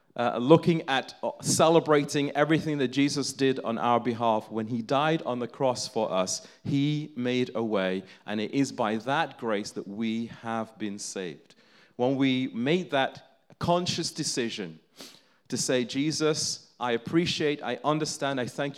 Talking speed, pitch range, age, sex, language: 155 wpm, 105-135 Hz, 40-59, male, English